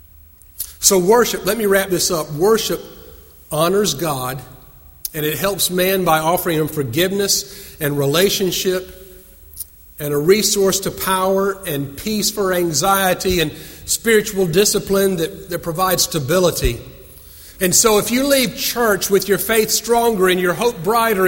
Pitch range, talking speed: 145-205 Hz, 140 wpm